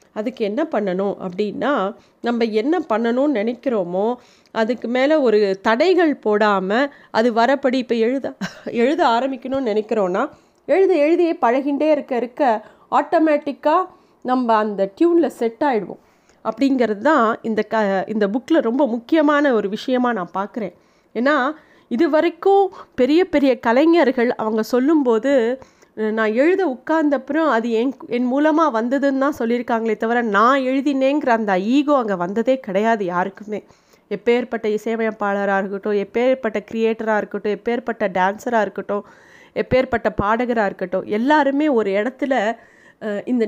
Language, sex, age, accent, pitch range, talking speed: Tamil, female, 30-49, native, 210-275 Hz, 115 wpm